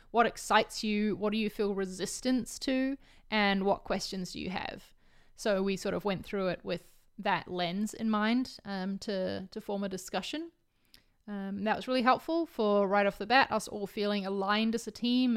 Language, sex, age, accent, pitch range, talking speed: English, female, 20-39, Australian, 190-225 Hz, 200 wpm